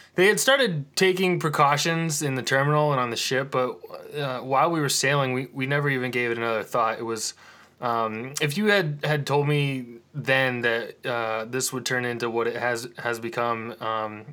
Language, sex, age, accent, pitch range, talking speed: English, male, 20-39, American, 120-155 Hz, 200 wpm